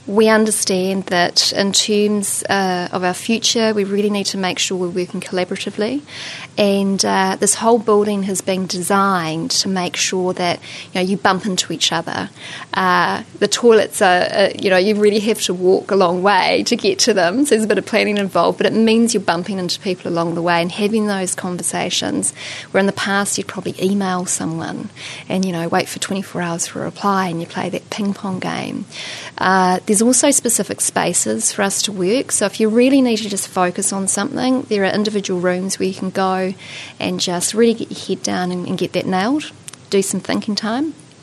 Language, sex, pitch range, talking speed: English, female, 185-210 Hz, 210 wpm